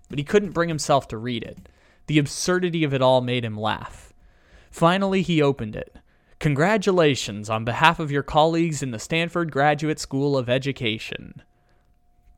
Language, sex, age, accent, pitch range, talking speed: English, male, 20-39, American, 115-160 Hz, 160 wpm